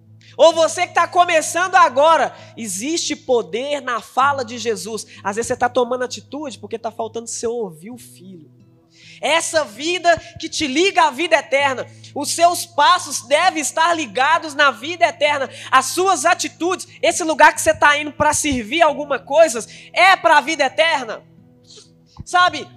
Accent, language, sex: Brazilian, Portuguese, female